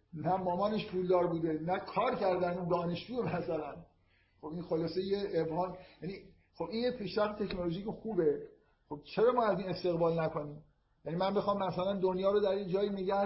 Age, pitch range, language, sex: 50-69, 165-200 Hz, Persian, male